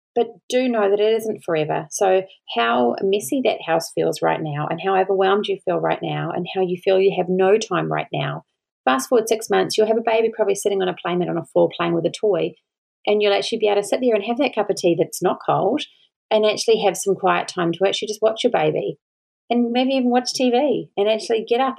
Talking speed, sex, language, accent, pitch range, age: 250 wpm, female, English, Australian, 175-230 Hz, 30-49